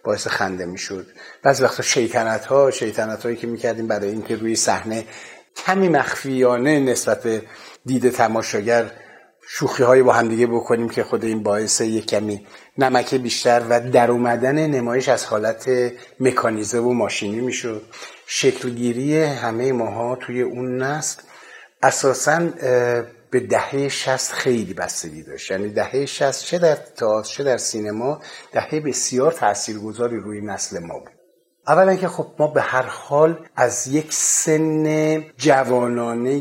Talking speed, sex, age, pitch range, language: 140 wpm, male, 50-69, 115-145 Hz, Persian